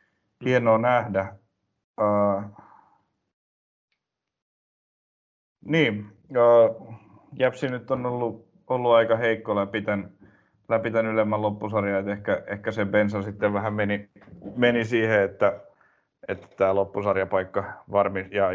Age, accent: 30-49, native